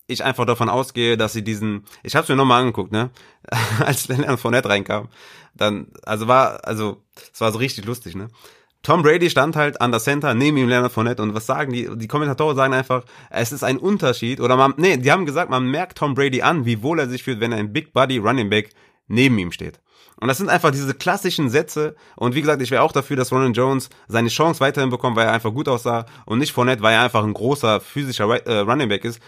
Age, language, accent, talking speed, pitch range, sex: 30-49, German, German, 235 wpm, 115-140 Hz, male